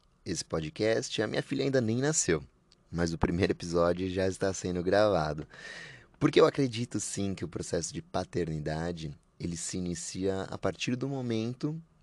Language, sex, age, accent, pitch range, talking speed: Portuguese, male, 20-39, Brazilian, 85-105 Hz, 160 wpm